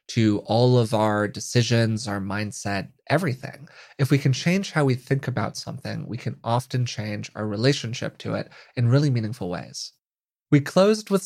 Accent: American